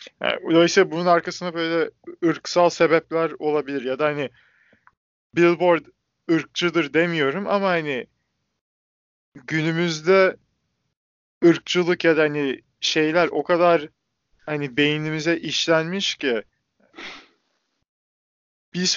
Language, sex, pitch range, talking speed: Turkish, male, 140-175 Hz, 95 wpm